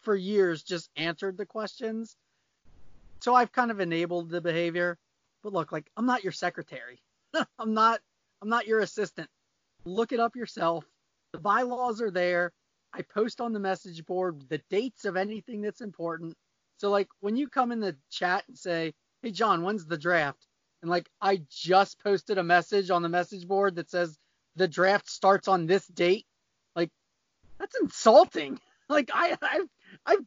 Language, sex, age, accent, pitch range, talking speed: English, male, 30-49, American, 170-215 Hz, 175 wpm